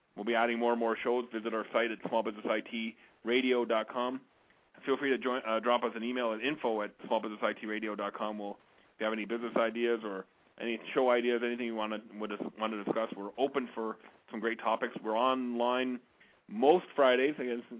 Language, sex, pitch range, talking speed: English, male, 110-120 Hz, 170 wpm